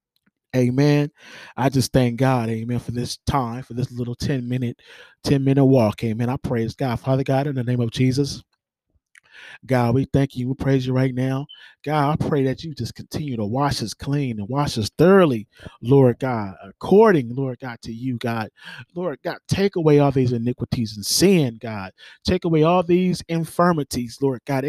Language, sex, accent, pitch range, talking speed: English, male, American, 125-150 Hz, 185 wpm